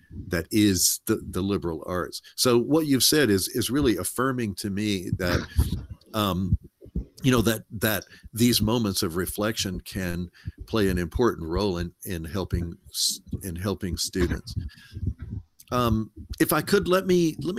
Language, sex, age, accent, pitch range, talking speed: English, male, 50-69, American, 90-110 Hz, 150 wpm